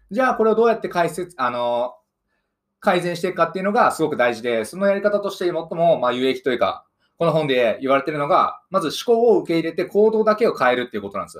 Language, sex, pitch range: Japanese, male, 155-220 Hz